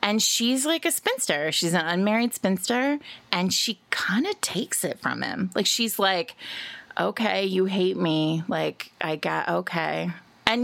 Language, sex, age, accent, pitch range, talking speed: English, female, 30-49, American, 165-230 Hz, 165 wpm